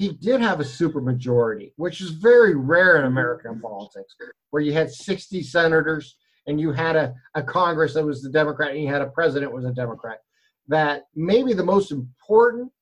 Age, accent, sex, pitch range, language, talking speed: 50-69, American, male, 140-190 Hz, English, 190 wpm